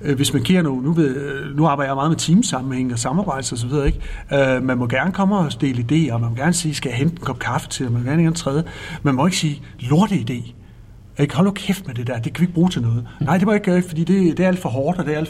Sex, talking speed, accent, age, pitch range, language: male, 285 wpm, native, 60-79, 130-170 Hz, Danish